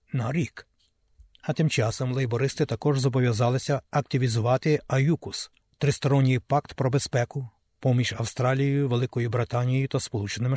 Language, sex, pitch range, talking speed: Ukrainian, male, 125-145 Hz, 115 wpm